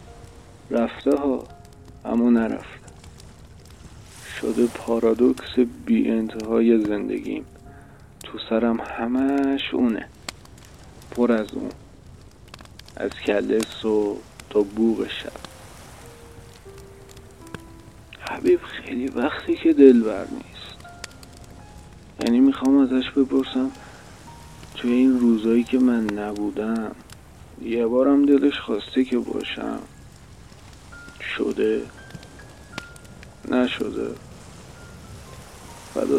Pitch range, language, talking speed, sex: 110-130 Hz, Persian, 75 wpm, male